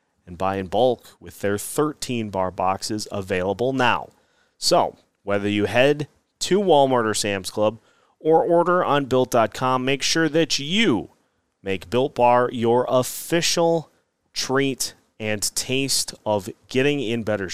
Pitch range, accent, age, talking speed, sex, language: 105-135 Hz, American, 30-49, 135 wpm, male, English